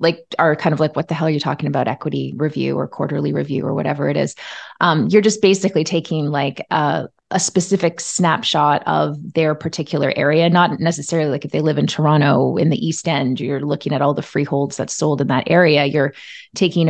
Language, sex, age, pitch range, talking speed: English, female, 30-49, 145-165 Hz, 215 wpm